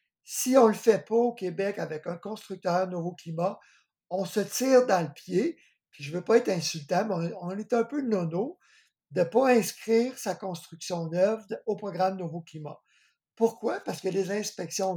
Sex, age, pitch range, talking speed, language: male, 60-79, 160-200 Hz, 190 wpm, French